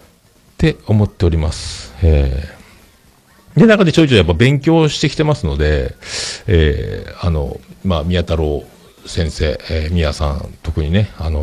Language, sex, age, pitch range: Japanese, male, 50-69, 80-105 Hz